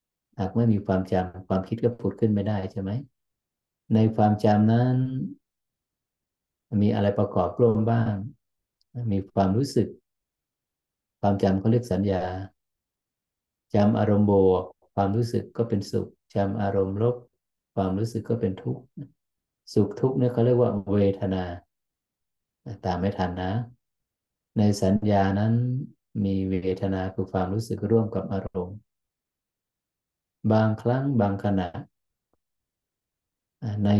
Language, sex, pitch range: Thai, male, 95-115 Hz